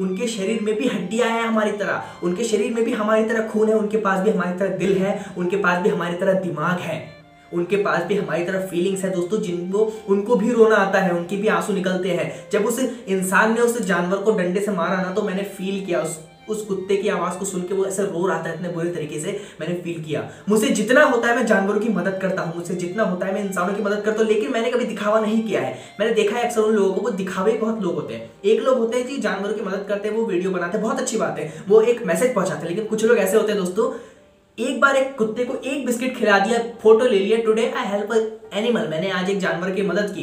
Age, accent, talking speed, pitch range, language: 20-39, native, 170 wpm, 175-220 Hz, Hindi